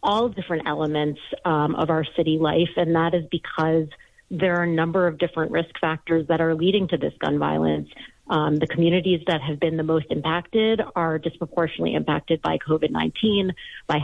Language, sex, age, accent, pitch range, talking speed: English, female, 30-49, American, 155-180 Hz, 185 wpm